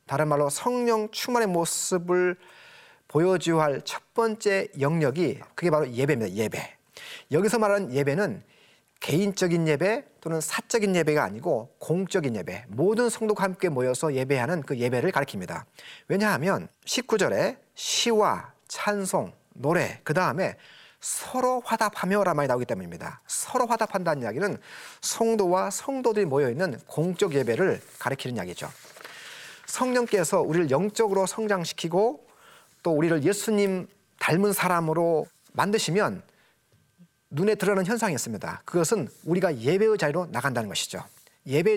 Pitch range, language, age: 155-210 Hz, Korean, 30-49